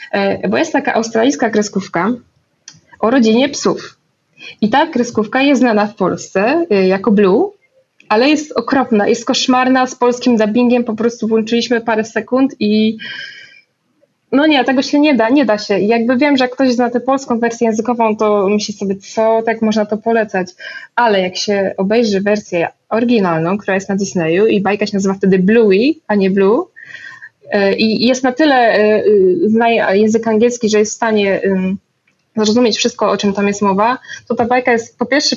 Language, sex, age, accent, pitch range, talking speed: Polish, female, 20-39, native, 205-245 Hz, 175 wpm